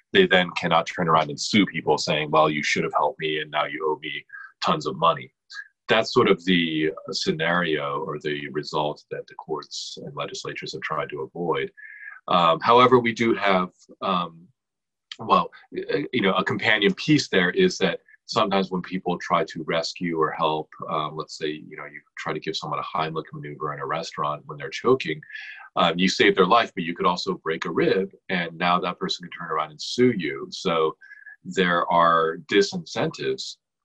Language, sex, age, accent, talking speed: English, male, 40-59, American, 190 wpm